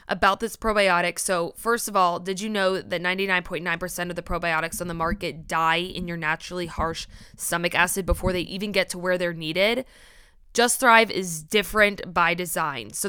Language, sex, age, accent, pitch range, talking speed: English, female, 20-39, American, 175-215 Hz, 185 wpm